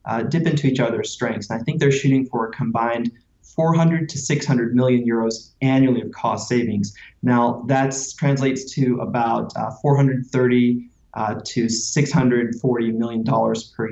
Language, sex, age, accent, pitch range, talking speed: English, male, 20-39, American, 115-135 Hz, 155 wpm